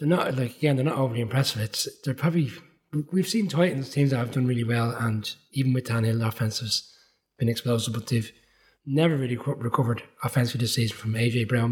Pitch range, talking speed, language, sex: 115-135 Hz, 205 wpm, English, male